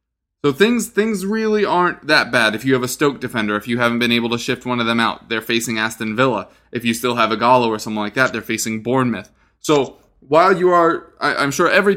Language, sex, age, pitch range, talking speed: English, male, 20-39, 110-140 Hz, 245 wpm